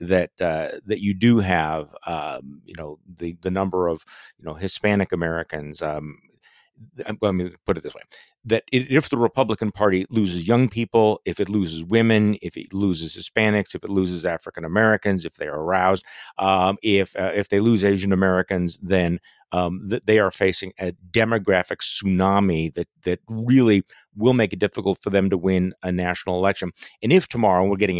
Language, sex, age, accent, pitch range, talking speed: English, male, 50-69, American, 90-110 Hz, 180 wpm